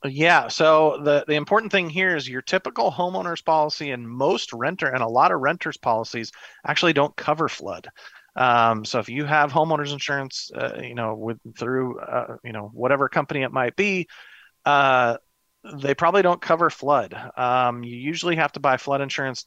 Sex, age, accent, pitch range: male, 40-59, American, 120-150 Hz